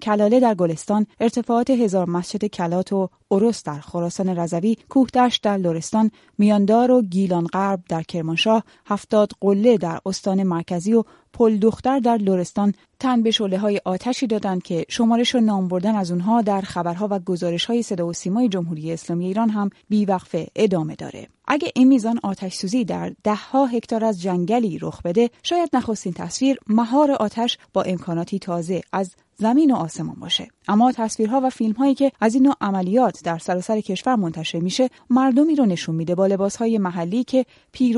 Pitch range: 185-235 Hz